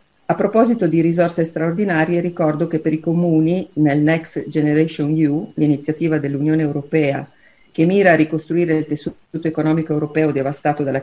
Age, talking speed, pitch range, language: 40-59, 145 wpm, 145-175 Hz, Italian